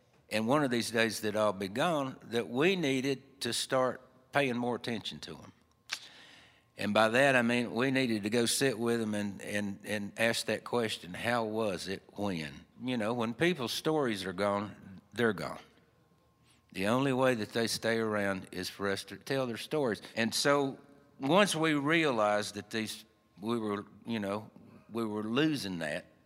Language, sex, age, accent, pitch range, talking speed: English, male, 60-79, American, 100-130 Hz, 180 wpm